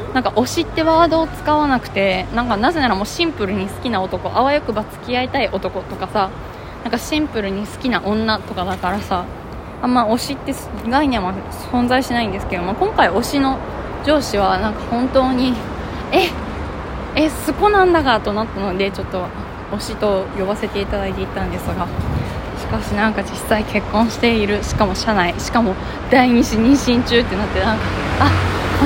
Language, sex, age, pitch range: Japanese, female, 20-39, 195-285 Hz